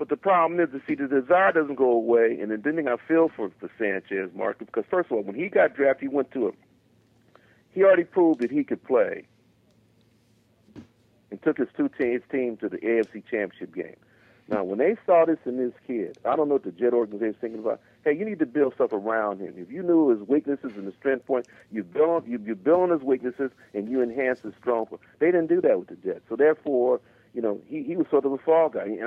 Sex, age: male, 50-69